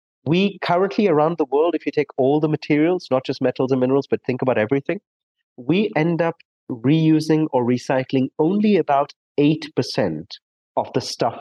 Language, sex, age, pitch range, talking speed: English, male, 30-49, 125-170 Hz, 170 wpm